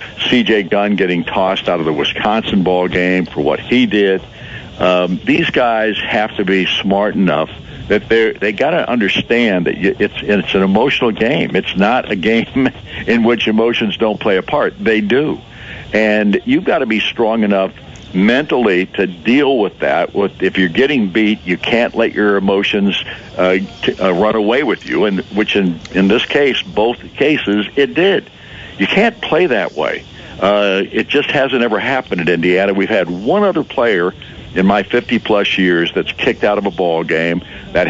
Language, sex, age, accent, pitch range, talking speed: English, male, 60-79, American, 90-110 Hz, 175 wpm